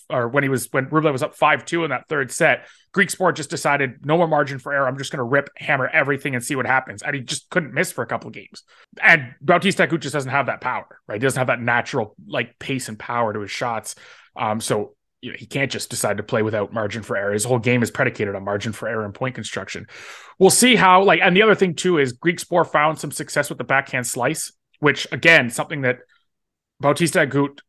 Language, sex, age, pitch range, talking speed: English, male, 30-49, 135-170 Hz, 245 wpm